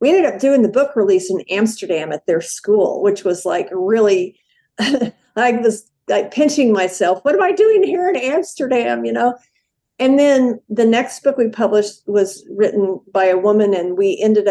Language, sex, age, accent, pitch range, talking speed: English, female, 50-69, American, 195-255 Hz, 185 wpm